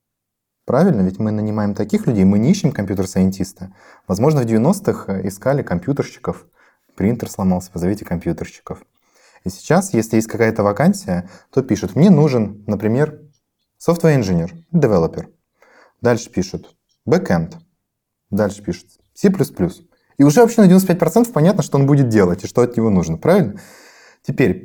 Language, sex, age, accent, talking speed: Russian, male, 20-39, native, 140 wpm